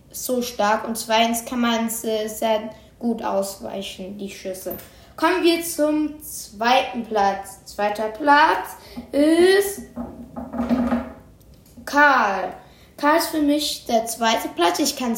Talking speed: 115 wpm